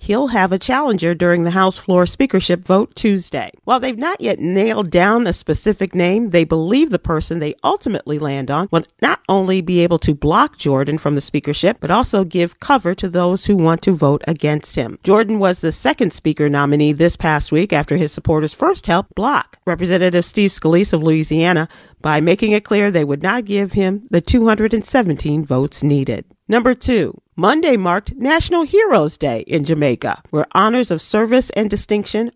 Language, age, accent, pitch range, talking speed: English, 40-59, American, 160-210 Hz, 185 wpm